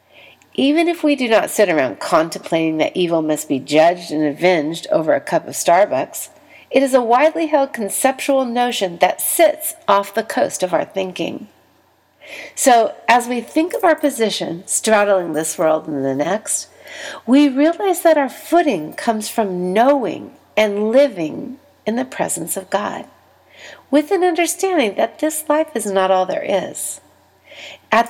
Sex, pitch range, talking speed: female, 185-290 Hz, 160 wpm